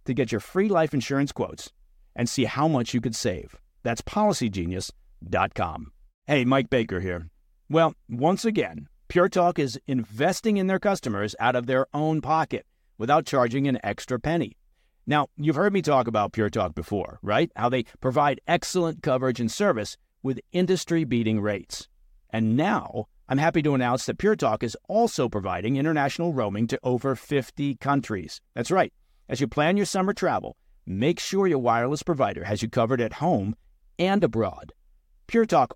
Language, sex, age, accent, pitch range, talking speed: English, male, 50-69, American, 115-165 Hz, 165 wpm